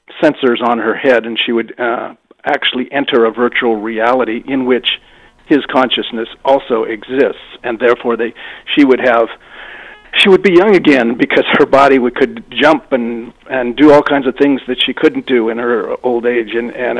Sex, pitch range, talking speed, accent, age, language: male, 120-135 Hz, 185 wpm, American, 50-69, English